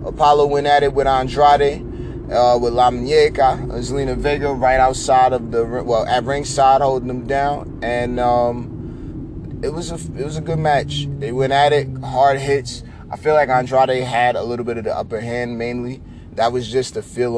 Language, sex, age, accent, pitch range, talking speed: English, male, 20-39, American, 105-130 Hz, 190 wpm